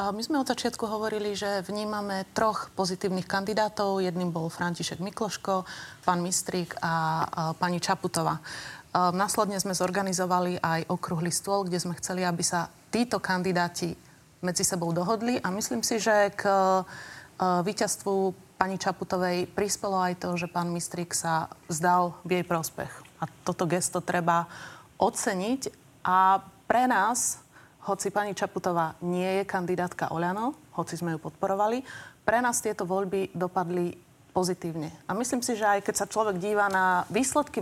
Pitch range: 180-210 Hz